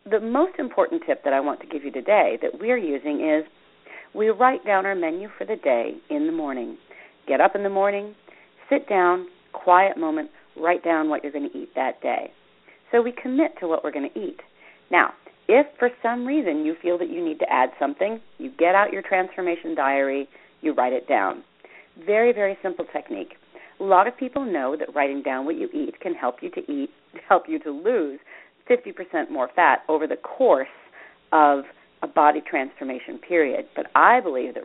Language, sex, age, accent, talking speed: English, female, 40-59, American, 200 wpm